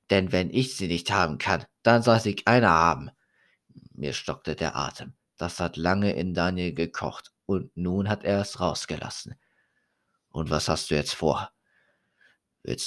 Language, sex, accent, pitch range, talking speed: German, male, German, 90-125 Hz, 165 wpm